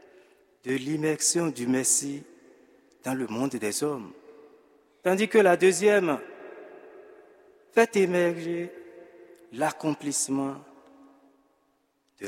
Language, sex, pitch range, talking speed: French, male, 145-215 Hz, 85 wpm